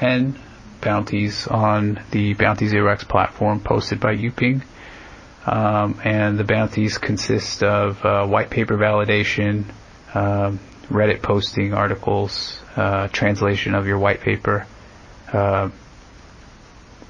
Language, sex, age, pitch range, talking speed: English, male, 30-49, 100-110 Hz, 110 wpm